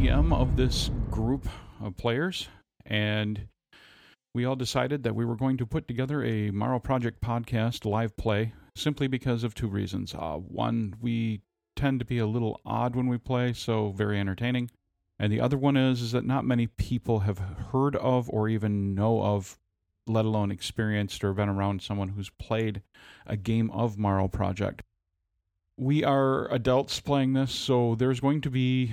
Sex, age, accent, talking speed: male, 40-59, American, 170 wpm